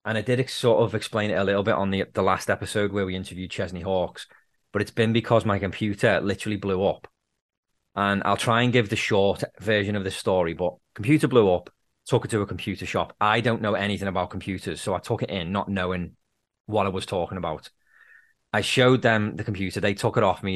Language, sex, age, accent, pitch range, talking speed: English, male, 20-39, British, 95-110 Hz, 230 wpm